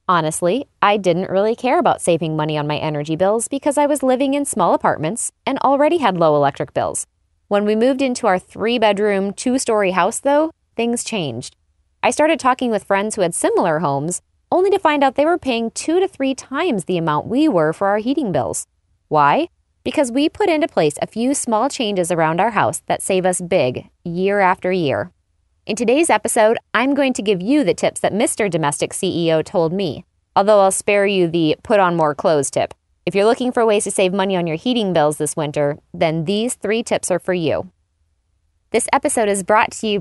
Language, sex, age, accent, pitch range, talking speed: English, female, 20-39, American, 165-240 Hz, 205 wpm